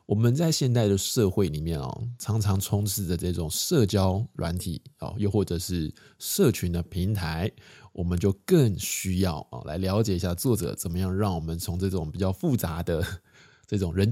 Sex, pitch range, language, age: male, 90-110 Hz, Chinese, 20-39